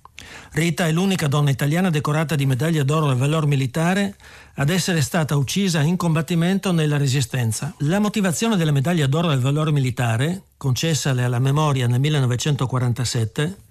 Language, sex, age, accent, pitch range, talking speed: Italian, male, 50-69, native, 130-170 Hz, 145 wpm